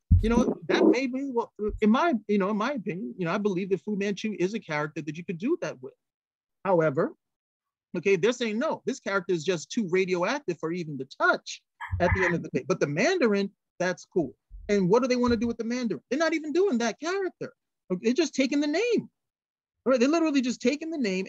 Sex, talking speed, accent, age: male, 235 wpm, American, 30-49